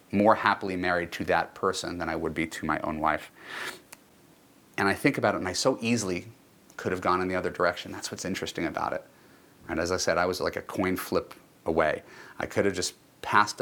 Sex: male